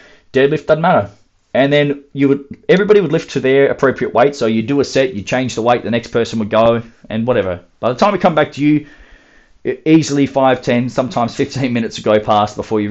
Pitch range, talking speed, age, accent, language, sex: 110-155 Hz, 230 wpm, 30-49, Australian, English, male